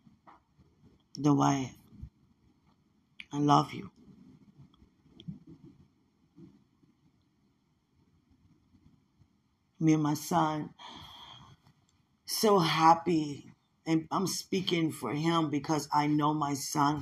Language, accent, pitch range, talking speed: English, American, 145-165 Hz, 75 wpm